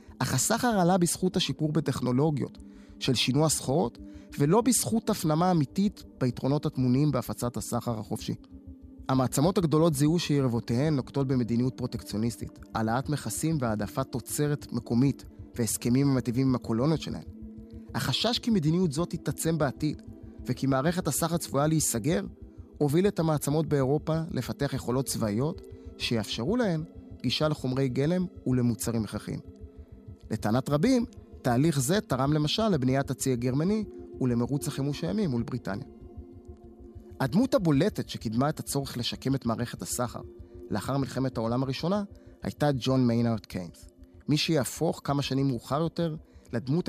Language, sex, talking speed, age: Hebrew, male, 125 wpm, 20-39